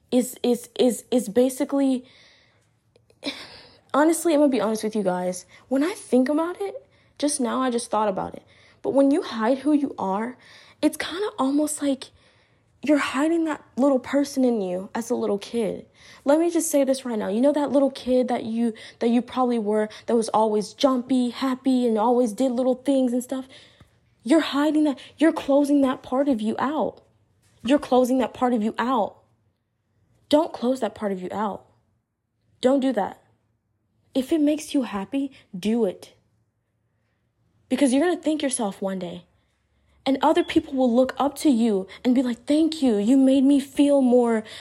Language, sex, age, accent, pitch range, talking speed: English, female, 20-39, American, 220-285 Hz, 185 wpm